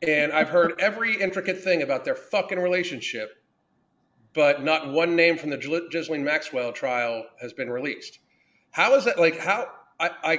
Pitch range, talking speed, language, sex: 150-195 Hz, 160 wpm, English, male